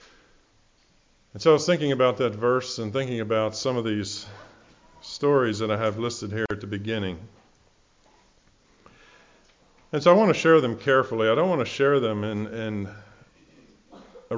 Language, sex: English, male